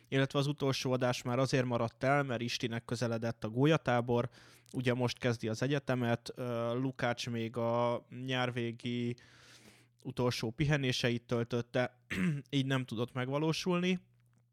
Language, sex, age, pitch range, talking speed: Hungarian, male, 20-39, 115-130 Hz, 120 wpm